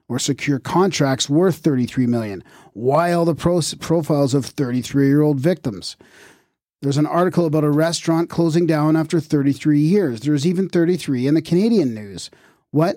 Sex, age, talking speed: male, 40-59, 155 wpm